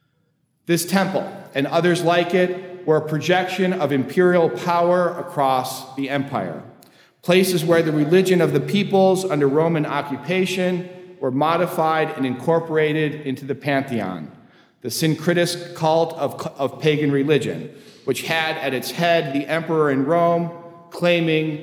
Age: 40-59